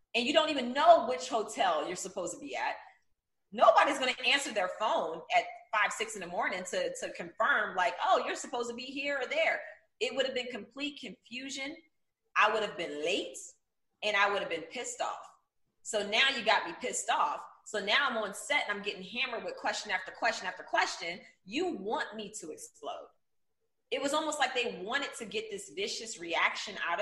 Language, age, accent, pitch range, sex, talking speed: English, 30-49, American, 200-285 Hz, female, 205 wpm